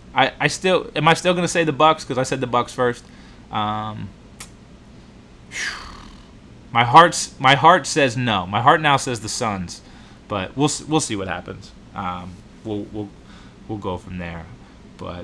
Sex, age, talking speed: male, 20-39, 175 wpm